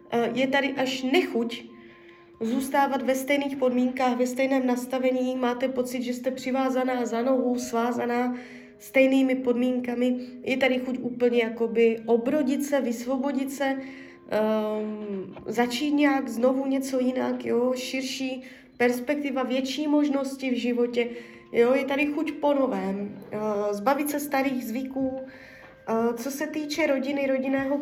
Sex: female